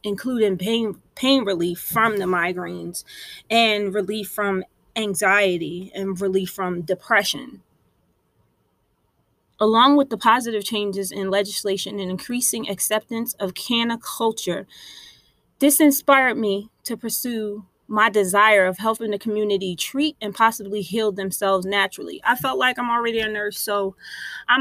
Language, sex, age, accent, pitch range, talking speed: English, female, 20-39, American, 190-225 Hz, 130 wpm